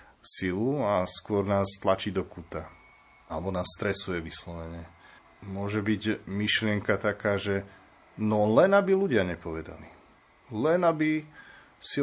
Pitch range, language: 90-105 Hz, Slovak